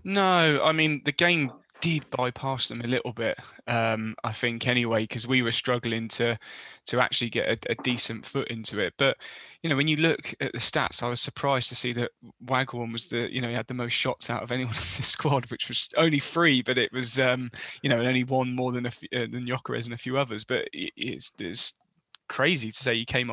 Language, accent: English, British